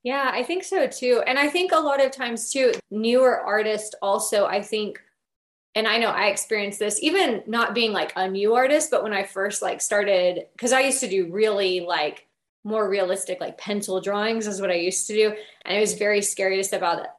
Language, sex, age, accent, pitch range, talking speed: English, female, 20-39, American, 195-235 Hz, 225 wpm